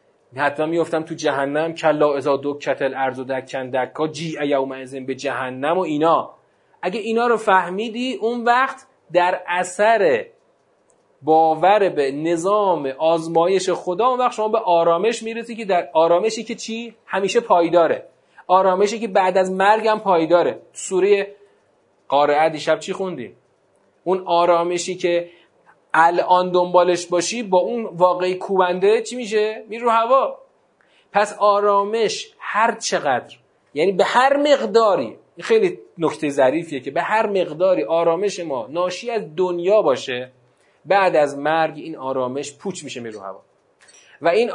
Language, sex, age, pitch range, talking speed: Persian, male, 30-49, 160-220 Hz, 140 wpm